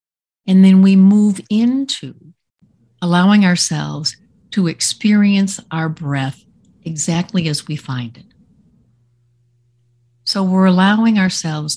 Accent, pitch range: American, 145-185 Hz